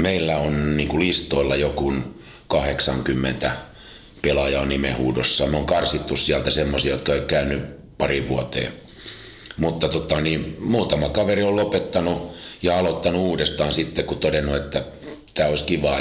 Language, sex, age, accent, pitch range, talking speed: Finnish, male, 50-69, native, 70-90 Hz, 135 wpm